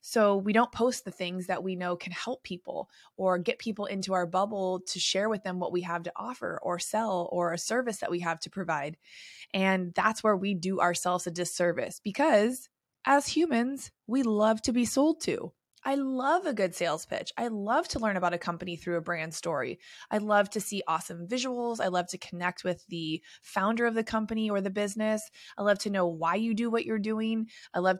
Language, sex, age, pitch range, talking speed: English, female, 20-39, 175-225 Hz, 220 wpm